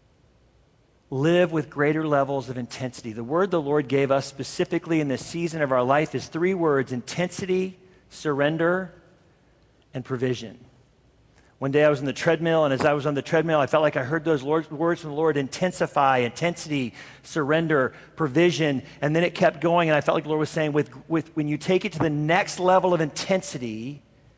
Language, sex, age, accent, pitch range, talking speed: English, male, 40-59, American, 145-195 Hz, 195 wpm